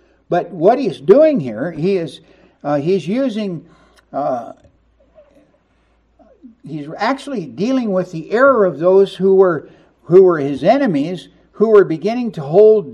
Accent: American